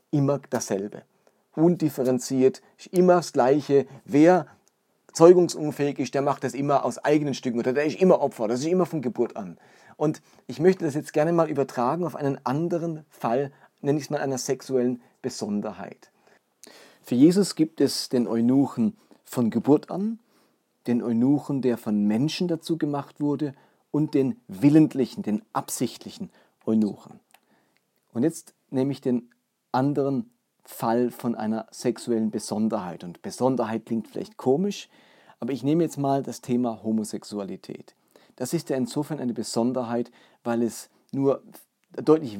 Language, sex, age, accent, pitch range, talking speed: German, male, 40-59, German, 120-150 Hz, 145 wpm